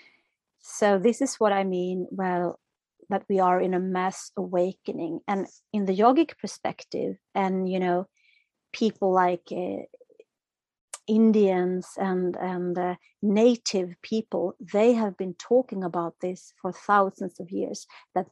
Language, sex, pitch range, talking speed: English, female, 185-215 Hz, 140 wpm